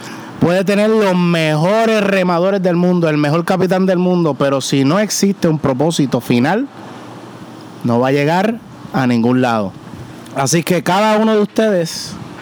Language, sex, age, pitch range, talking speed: Spanish, male, 30-49, 150-195 Hz, 155 wpm